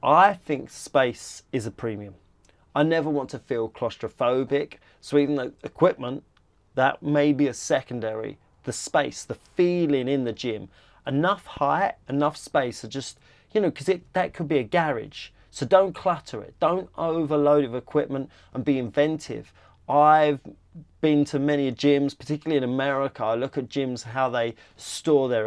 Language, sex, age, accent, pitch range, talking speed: English, male, 30-49, British, 120-145 Hz, 165 wpm